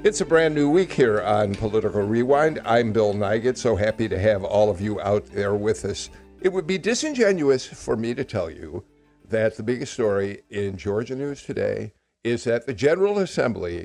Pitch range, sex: 105-140 Hz, male